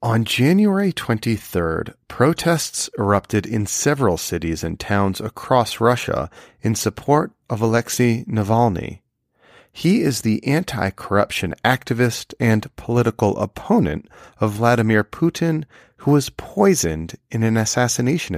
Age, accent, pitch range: 40-59, American, 105-140 Hz